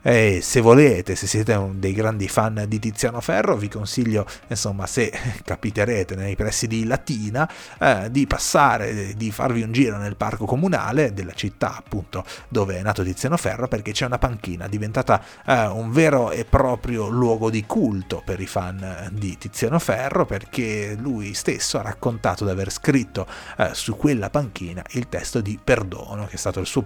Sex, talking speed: male, 175 wpm